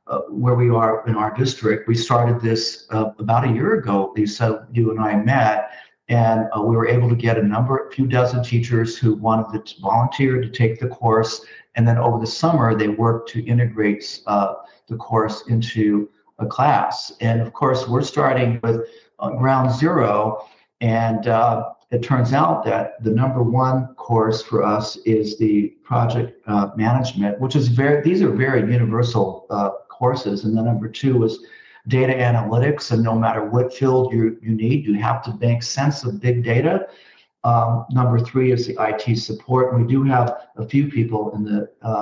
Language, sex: English, male